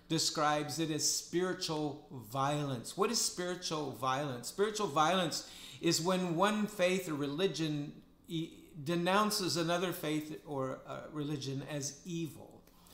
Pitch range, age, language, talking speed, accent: 130-165 Hz, 50-69, English, 110 wpm, American